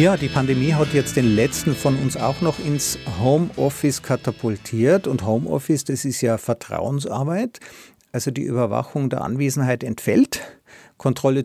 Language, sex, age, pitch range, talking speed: German, male, 50-69, 125-145 Hz, 140 wpm